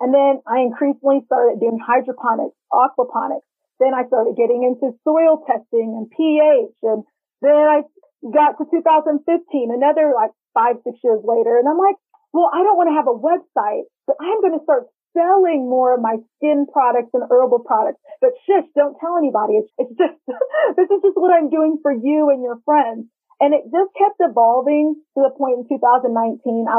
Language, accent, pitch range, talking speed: English, American, 240-315 Hz, 185 wpm